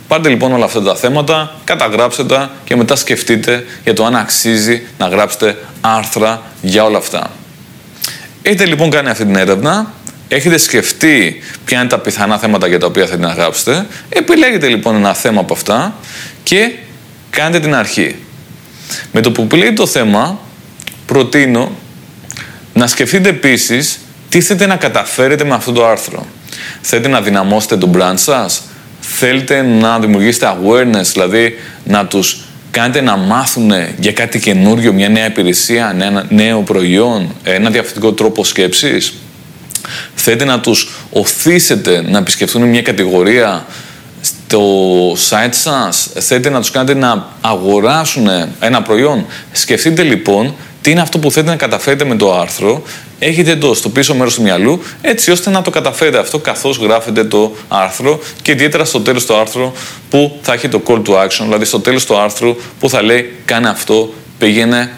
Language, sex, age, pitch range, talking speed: Greek, male, 20-39, 110-140 Hz, 155 wpm